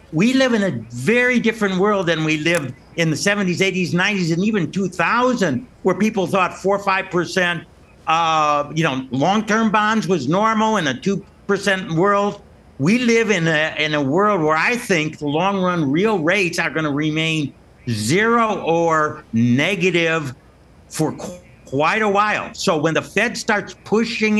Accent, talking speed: American, 155 wpm